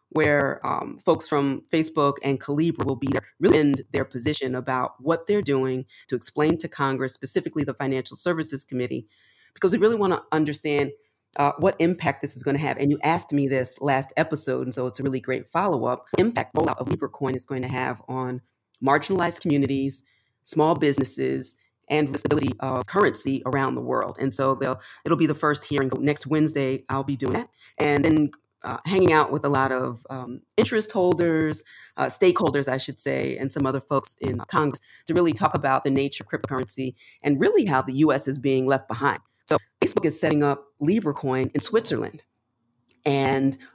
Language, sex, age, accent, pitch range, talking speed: English, female, 30-49, American, 130-150 Hz, 190 wpm